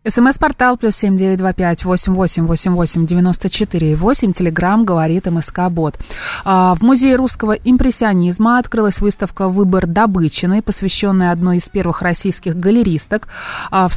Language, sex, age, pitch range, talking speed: Russian, female, 20-39, 180-215 Hz, 135 wpm